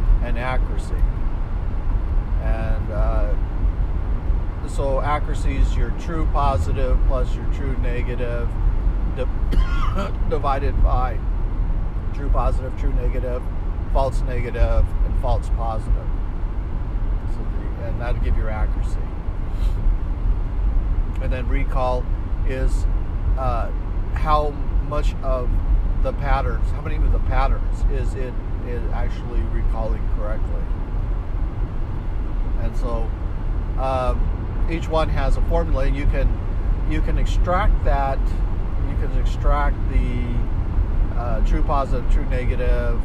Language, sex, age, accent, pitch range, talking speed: English, male, 50-69, American, 85-110 Hz, 110 wpm